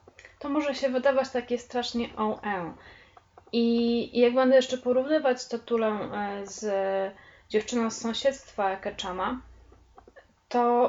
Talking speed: 110 wpm